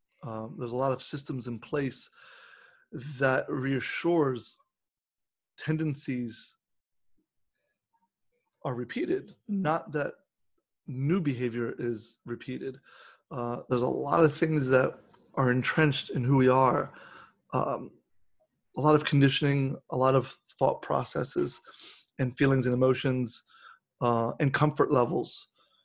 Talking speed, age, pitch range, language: 115 wpm, 30-49, 125-155 Hz, English